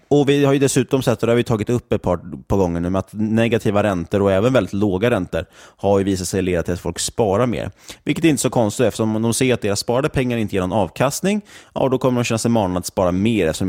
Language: Swedish